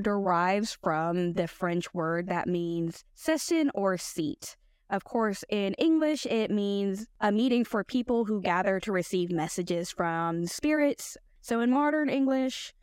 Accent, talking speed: American, 145 wpm